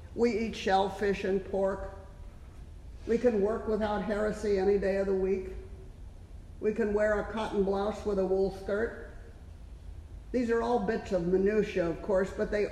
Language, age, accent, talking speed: English, 50-69, American, 165 wpm